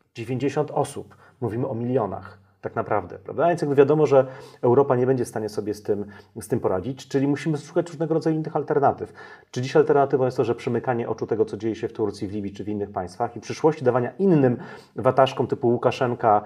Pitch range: 110-140 Hz